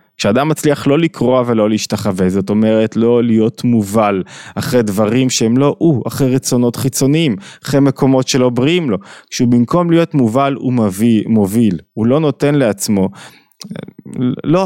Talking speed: 145 wpm